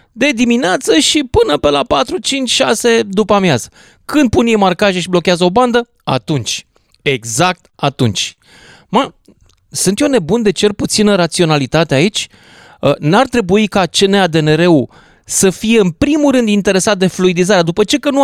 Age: 30-49